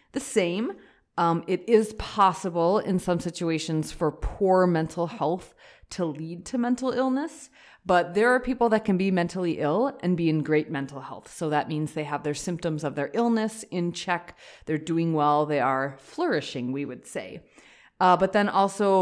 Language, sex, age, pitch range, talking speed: English, female, 30-49, 145-180 Hz, 185 wpm